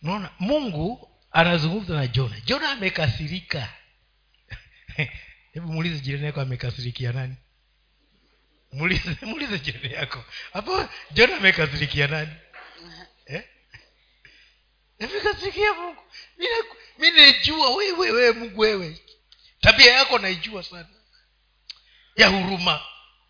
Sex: male